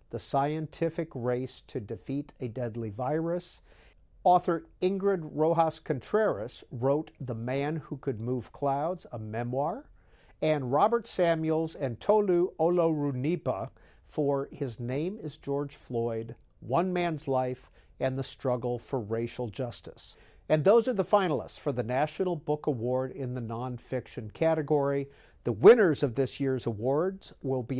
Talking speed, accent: 140 wpm, American